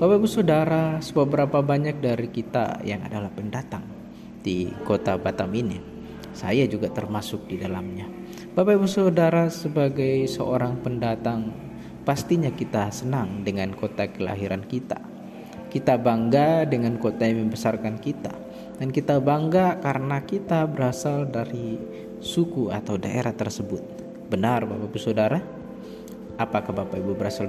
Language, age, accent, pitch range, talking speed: Indonesian, 20-39, native, 115-170 Hz, 120 wpm